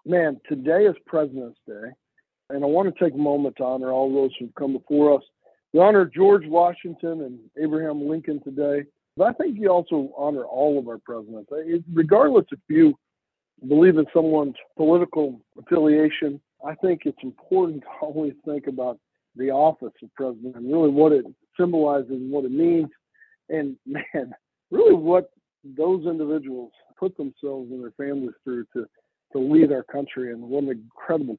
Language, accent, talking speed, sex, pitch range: English, American, 170 wpm, male, 130-170 Hz